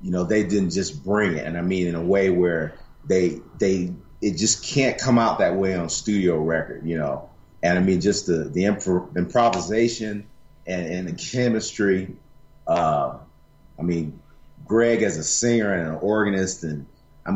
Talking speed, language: 175 wpm, English